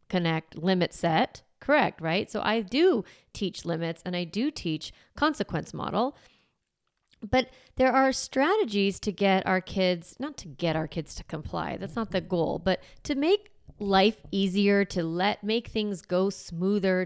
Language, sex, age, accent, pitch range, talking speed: English, female, 30-49, American, 170-230 Hz, 160 wpm